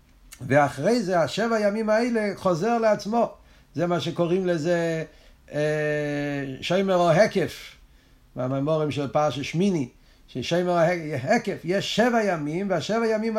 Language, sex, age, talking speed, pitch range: Hebrew, male, 50-69, 110 wpm, 155-215 Hz